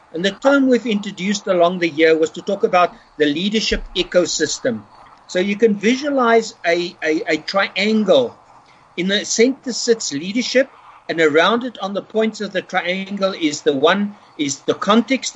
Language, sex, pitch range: English, male, 170-230 Hz